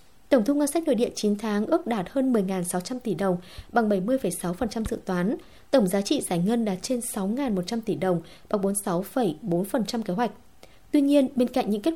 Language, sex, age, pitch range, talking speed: Vietnamese, female, 20-39, 195-260 Hz, 190 wpm